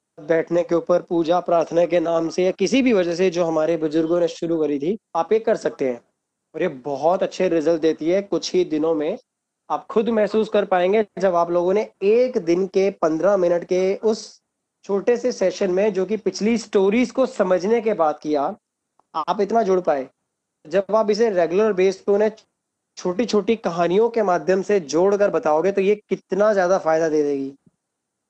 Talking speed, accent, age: 195 wpm, native, 20-39